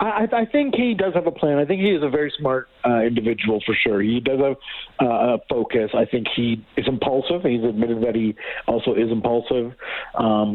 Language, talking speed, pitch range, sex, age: English, 215 wpm, 110-135 Hz, male, 50-69